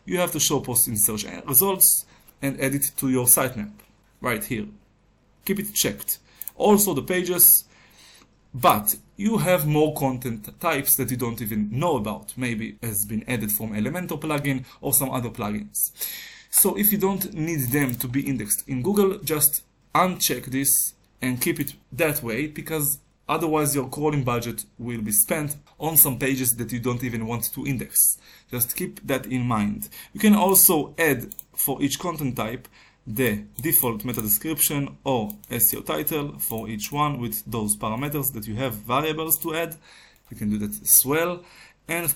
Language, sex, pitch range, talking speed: Hebrew, male, 120-160 Hz, 175 wpm